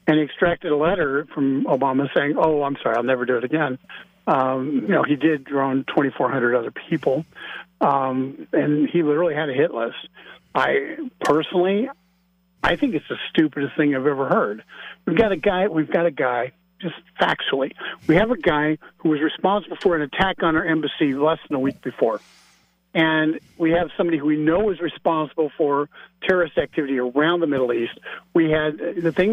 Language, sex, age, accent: English, male, 50-69, American